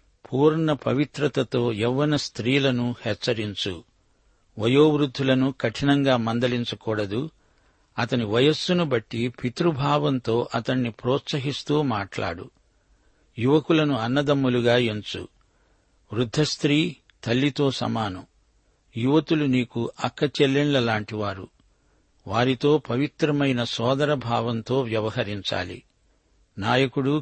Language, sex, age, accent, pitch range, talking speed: Telugu, male, 60-79, native, 115-145 Hz, 70 wpm